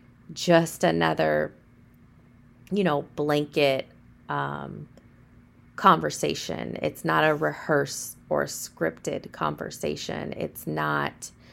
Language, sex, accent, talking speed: English, female, American, 85 wpm